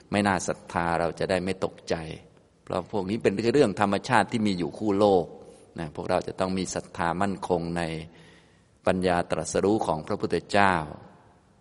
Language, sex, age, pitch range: Thai, male, 20-39, 85-95 Hz